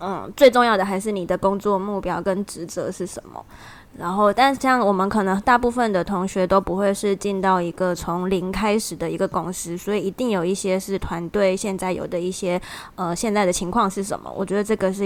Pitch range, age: 180-210 Hz, 20-39